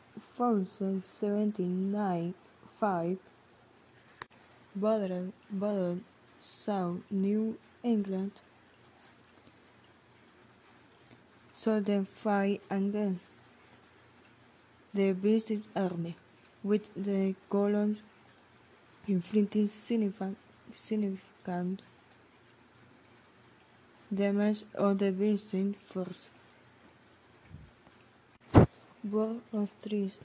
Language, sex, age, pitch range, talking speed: Spanish, female, 20-39, 190-210 Hz, 50 wpm